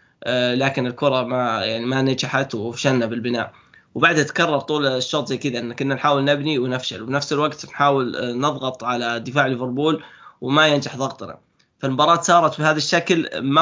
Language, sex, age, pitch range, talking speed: Arabic, male, 20-39, 125-140 Hz, 150 wpm